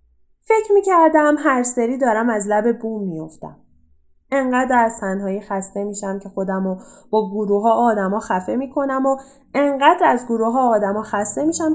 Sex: female